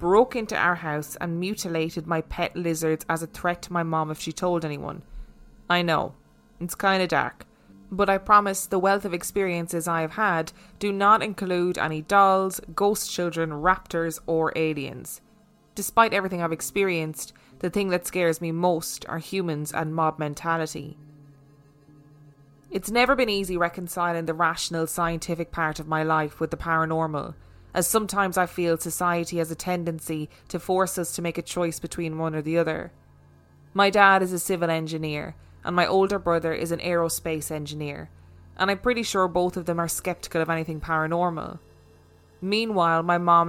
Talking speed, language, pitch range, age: 170 wpm, English, 155-185 Hz, 20-39